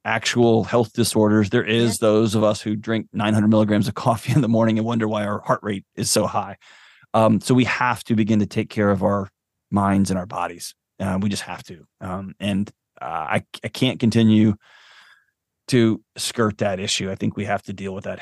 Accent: American